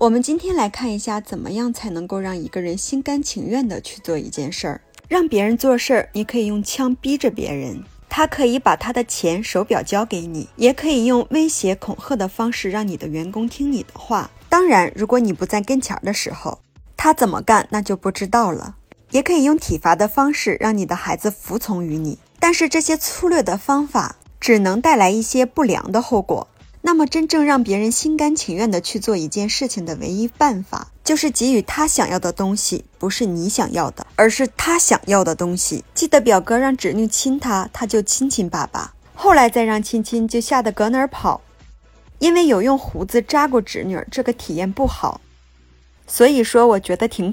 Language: Chinese